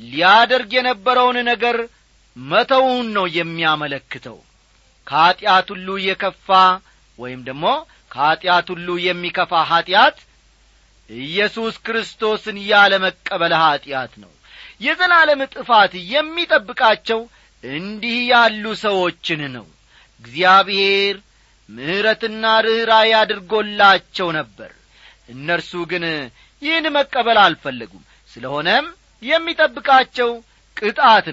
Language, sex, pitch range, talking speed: Amharic, male, 160-230 Hz, 75 wpm